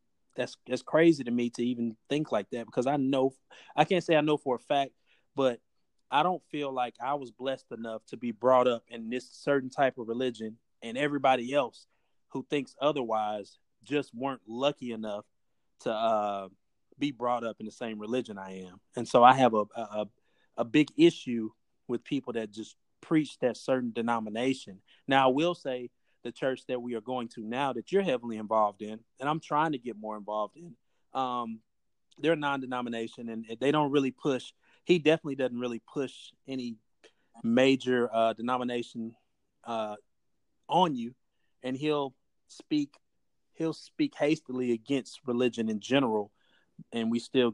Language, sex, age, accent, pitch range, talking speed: English, male, 30-49, American, 115-140 Hz, 170 wpm